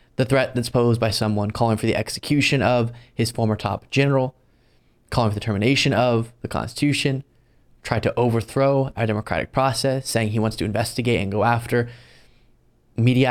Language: English